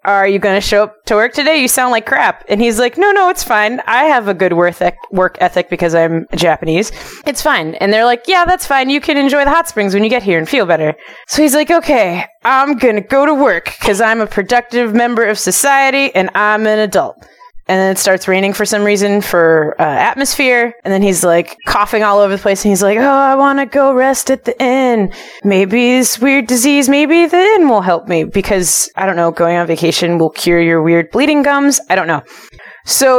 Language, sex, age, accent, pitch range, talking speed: English, female, 20-39, American, 190-260 Hz, 235 wpm